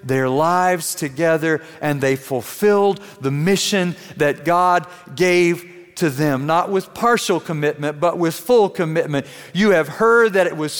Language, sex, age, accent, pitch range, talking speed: English, male, 40-59, American, 155-215 Hz, 150 wpm